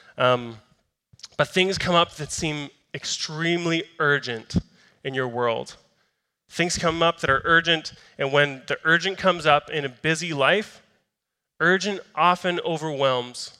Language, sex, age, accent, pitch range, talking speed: English, male, 20-39, American, 140-170 Hz, 135 wpm